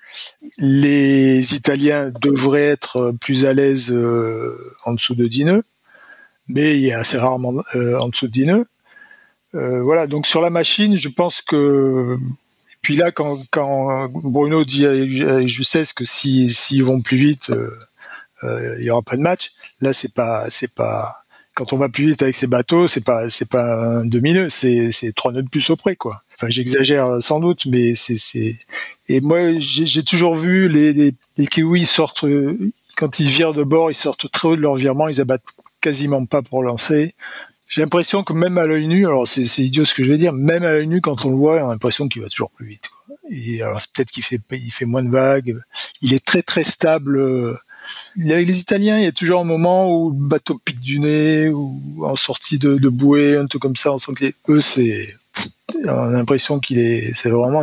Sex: male